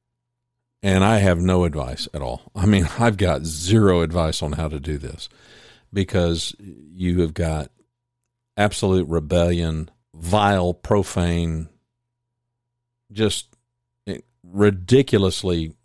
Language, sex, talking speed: English, male, 105 wpm